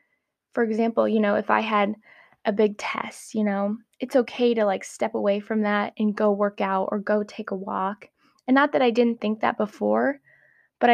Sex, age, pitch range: female, 20-39, 205-235 Hz